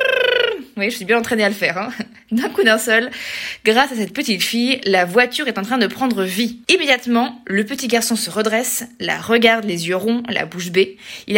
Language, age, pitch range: French, 20-39, 205-260 Hz